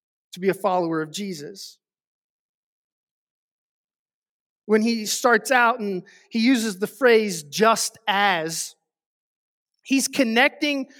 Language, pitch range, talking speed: English, 190-240 Hz, 105 wpm